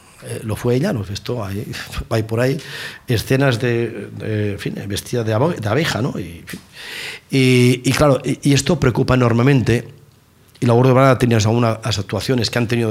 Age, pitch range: 40-59, 115-145 Hz